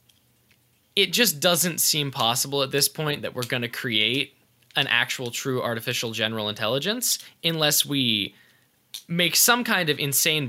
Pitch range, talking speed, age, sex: 115-160 Hz, 150 wpm, 10-29, male